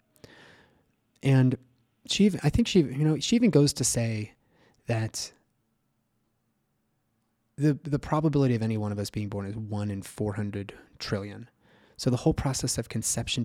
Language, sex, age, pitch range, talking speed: English, male, 20-39, 105-130 Hz, 155 wpm